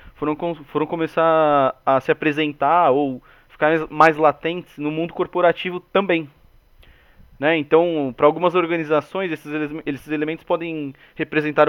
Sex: male